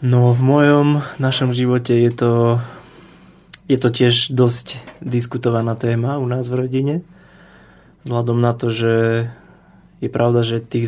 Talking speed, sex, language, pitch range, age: 145 wpm, male, Slovak, 115-125 Hz, 20-39